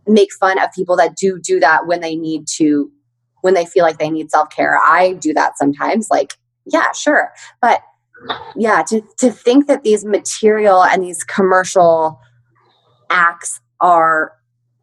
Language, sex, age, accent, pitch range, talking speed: English, female, 20-39, American, 155-210 Hz, 160 wpm